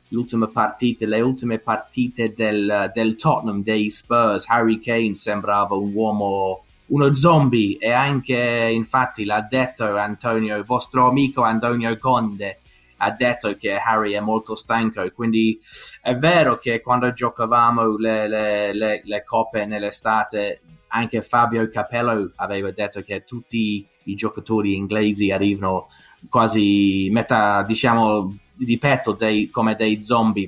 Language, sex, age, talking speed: Italian, male, 20-39, 130 wpm